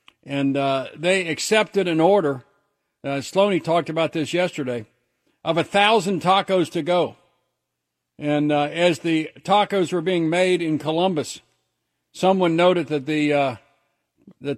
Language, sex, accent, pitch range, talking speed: English, male, American, 140-165 Hz, 140 wpm